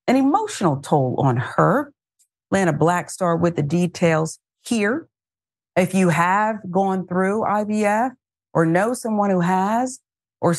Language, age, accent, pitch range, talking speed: English, 50-69, American, 140-205 Hz, 130 wpm